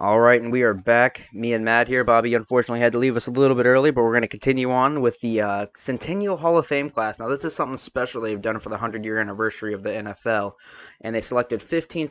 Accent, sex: American, male